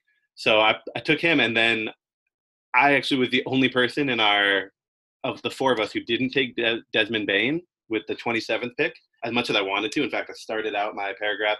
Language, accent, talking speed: English, American, 220 wpm